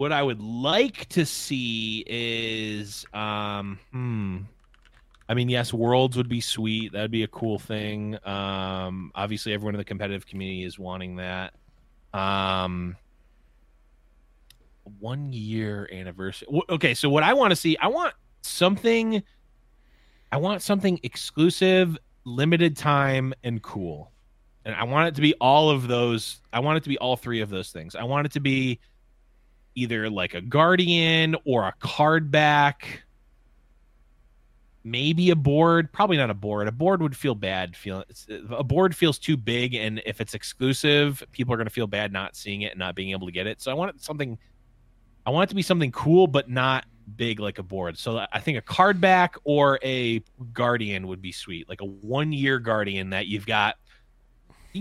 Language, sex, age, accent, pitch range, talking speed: English, male, 30-49, American, 100-145 Hz, 180 wpm